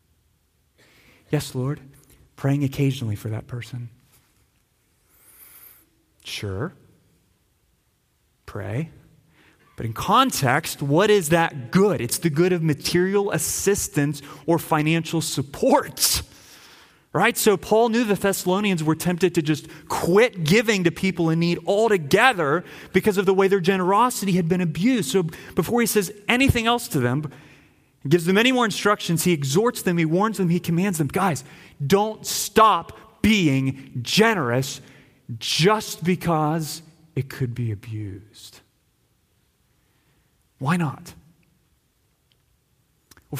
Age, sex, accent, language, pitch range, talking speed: 30-49, male, American, English, 120-185 Hz, 120 wpm